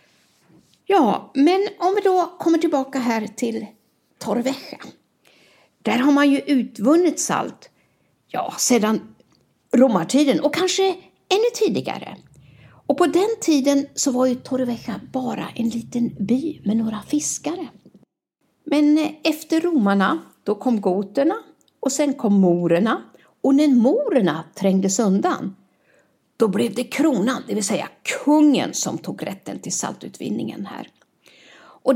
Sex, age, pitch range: female, 60-79, 235-305 Hz